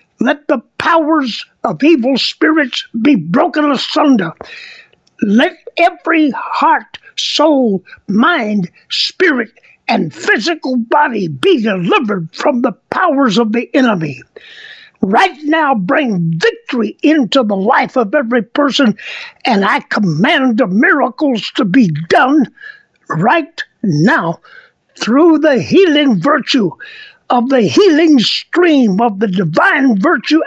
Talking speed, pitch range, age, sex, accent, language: 115 wpm, 235-345 Hz, 60-79, male, American, English